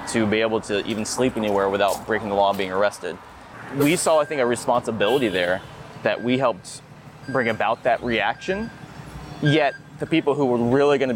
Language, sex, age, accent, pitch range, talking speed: English, male, 20-39, American, 110-135 Hz, 190 wpm